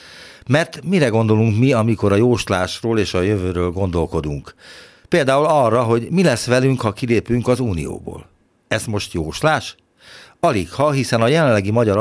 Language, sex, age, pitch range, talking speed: Hungarian, male, 60-79, 90-120 Hz, 150 wpm